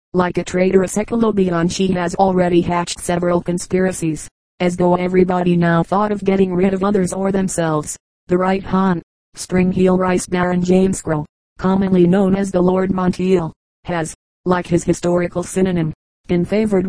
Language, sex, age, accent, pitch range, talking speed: English, female, 30-49, American, 175-190 Hz, 155 wpm